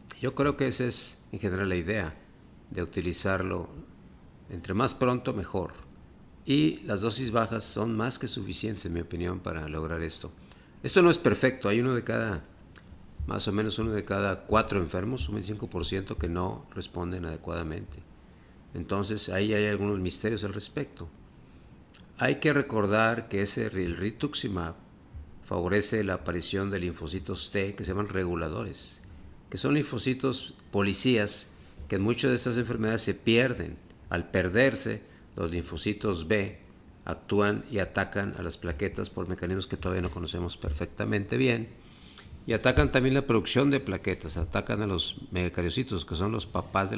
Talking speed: 155 wpm